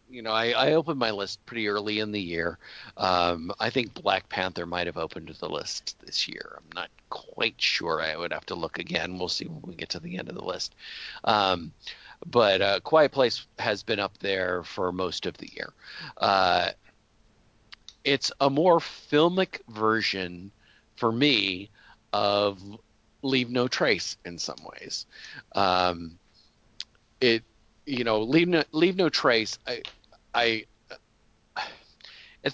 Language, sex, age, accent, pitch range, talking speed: English, male, 40-59, American, 95-125 Hz, 160 wpm